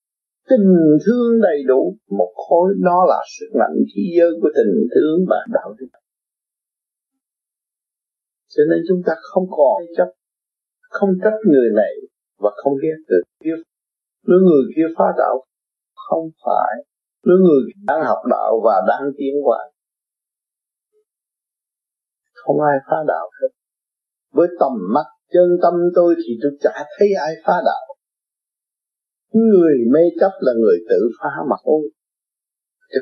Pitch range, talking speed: 145-235 Hz, 140 wpm